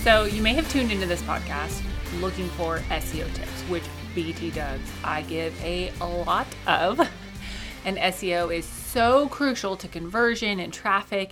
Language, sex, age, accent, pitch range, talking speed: English, female, 30-49, American, 160-210 Hz, 155 wpm